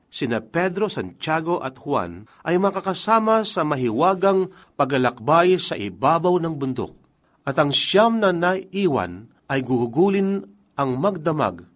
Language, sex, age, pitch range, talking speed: Filipino, male, 40-59, 130-190 Hz, 115 wpm